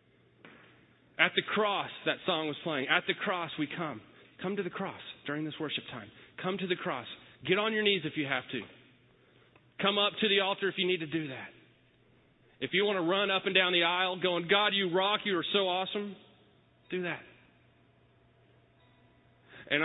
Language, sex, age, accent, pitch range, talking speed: English, male, 30-49, American, 125-170 Hz, 195 wpm